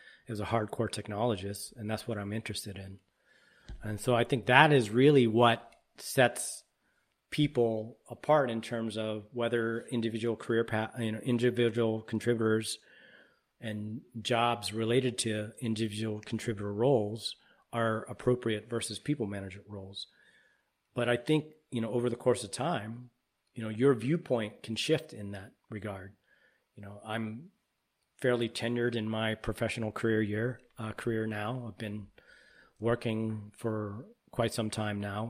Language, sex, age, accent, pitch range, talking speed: English, male, 40-59, American, 110-125 Hz, 145 wpm